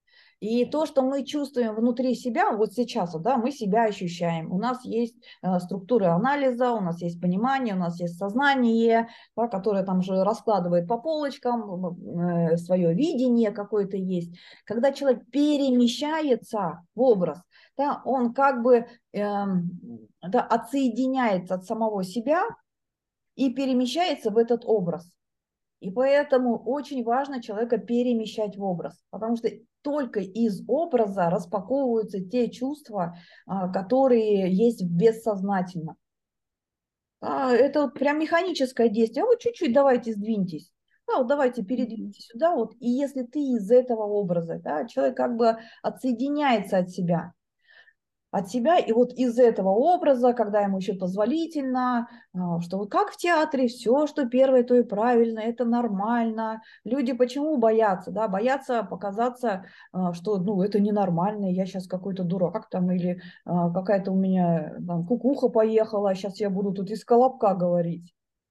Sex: female